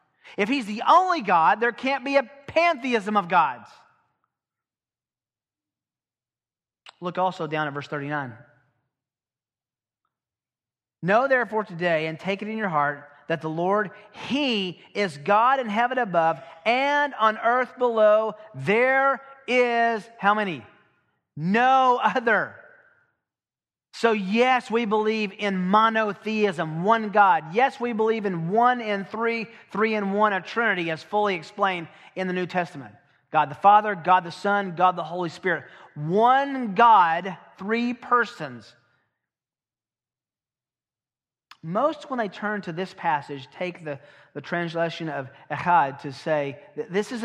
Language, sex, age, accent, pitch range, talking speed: English, male, 40-59, American, 155-230 Hz, 135 wpm